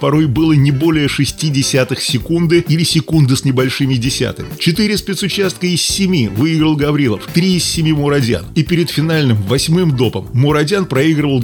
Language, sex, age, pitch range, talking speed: Russian, male, 30-49, 130-170 Hz, 150 wpm